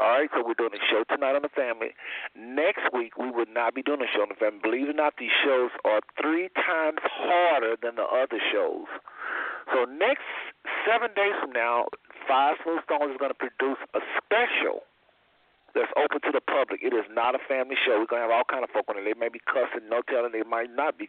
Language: English